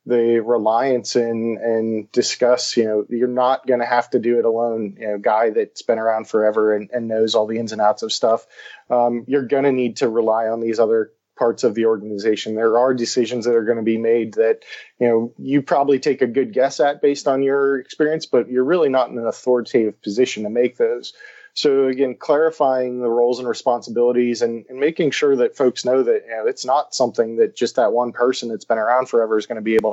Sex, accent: male, American